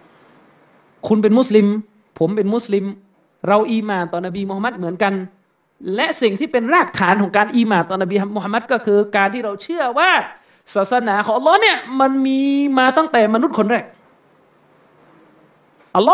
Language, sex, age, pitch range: Thai, male, 30-49, 210-290 Hz